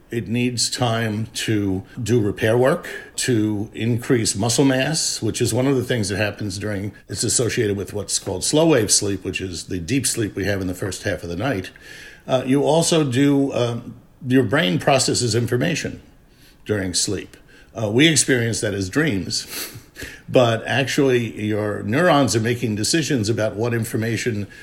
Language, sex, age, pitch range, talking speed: English, male, 60-79, 105-130 Hz, 170 wpm